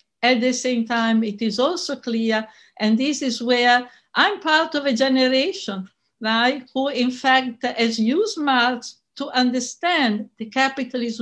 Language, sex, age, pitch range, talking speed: German, female, 60-79, 220-270 Hz, 150 wpm